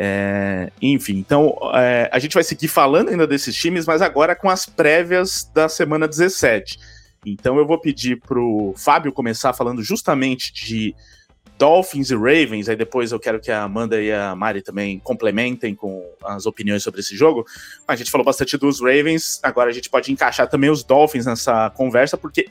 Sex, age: male, 20-39